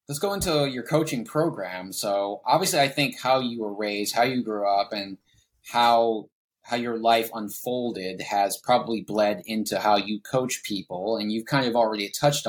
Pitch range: 100-130 Hz